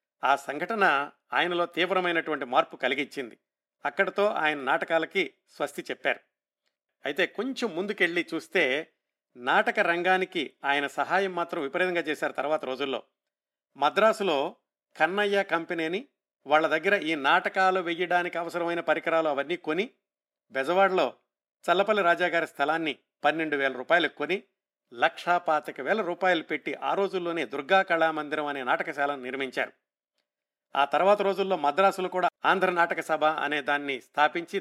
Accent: native